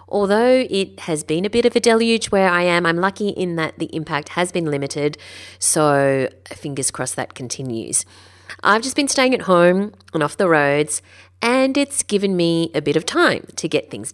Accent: Australian